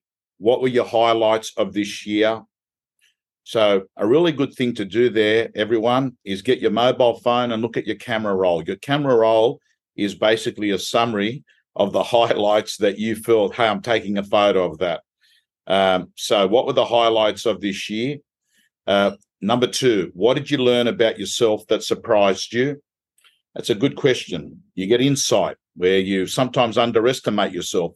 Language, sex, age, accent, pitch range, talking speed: English, male, 50-69, Australian, 105-120 Hz, 170 wpm